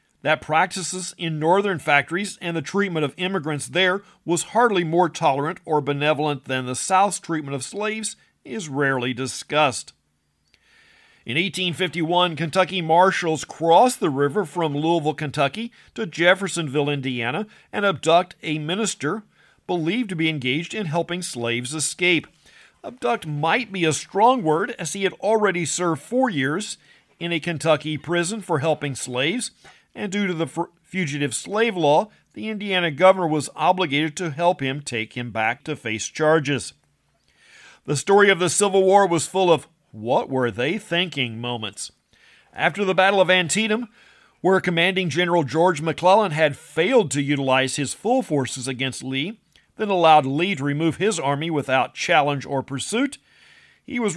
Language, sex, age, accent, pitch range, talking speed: English, male, 50-69, American, 145-190 Hz, 150 wpm